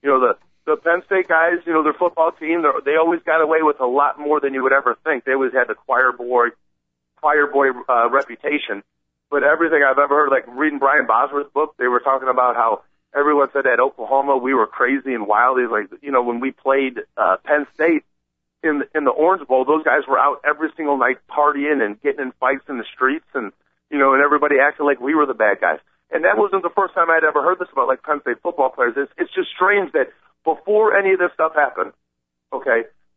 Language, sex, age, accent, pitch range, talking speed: English, male, 40-59, American, 130-180 Hz, 235 wpm